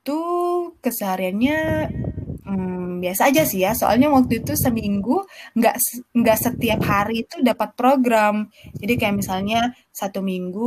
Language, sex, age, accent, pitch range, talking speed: Indonesian, female, 20-39, native, 200-255 Hz, 125 wpm